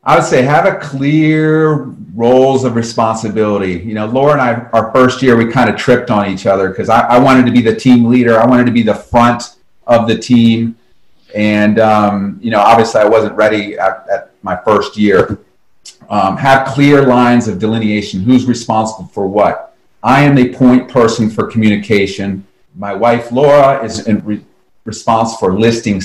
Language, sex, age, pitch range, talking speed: English, male, 40-59, 105-125 Hz, 185 wpm